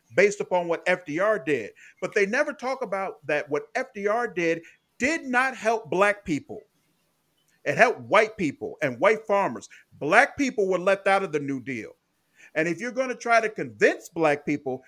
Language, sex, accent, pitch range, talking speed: English, male, American, 165-235 Hz, 180 wpm